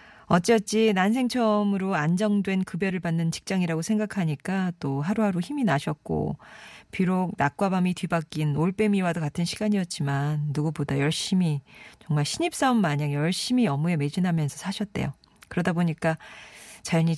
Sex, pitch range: female, 150-195 Hz